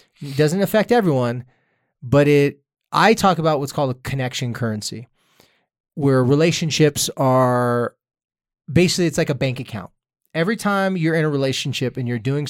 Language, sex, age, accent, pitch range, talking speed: English, male, 20-39, American, 130-155 Hz, 155 wpm